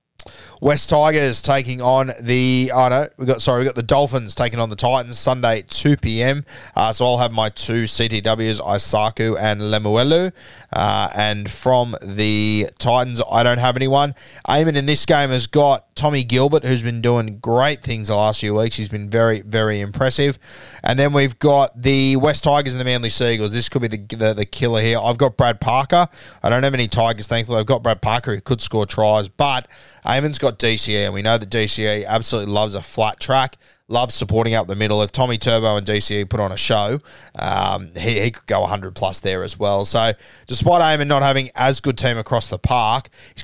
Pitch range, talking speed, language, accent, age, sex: 105-130 Hz, 210 wpm, English, Australian, 20-39, male